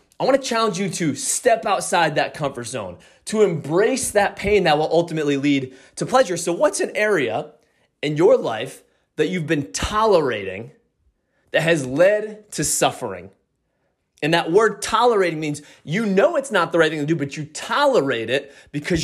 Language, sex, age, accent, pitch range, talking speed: English, male, 20-39, American, 145-205 Hz, 175 wpm